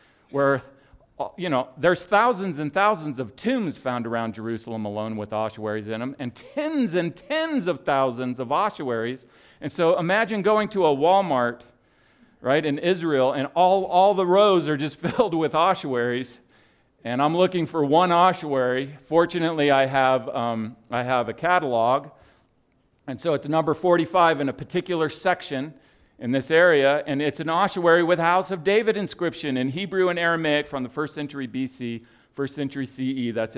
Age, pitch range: 50-69, 120-160 Hz